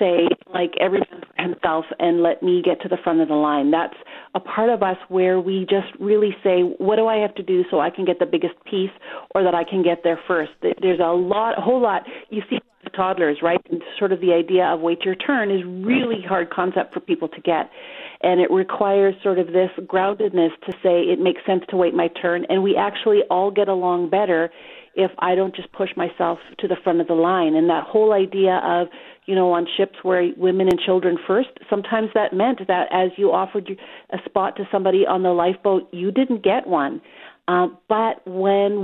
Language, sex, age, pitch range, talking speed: English, female, 40-59, 180-205 Hz, 220 wpm